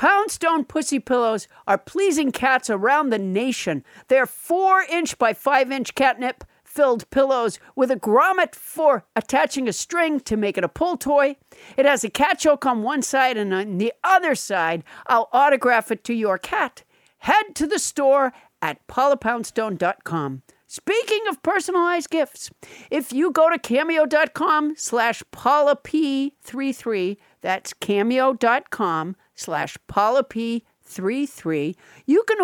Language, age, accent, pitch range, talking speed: English, 50-69, American, 230-330 Hz, 125 wpm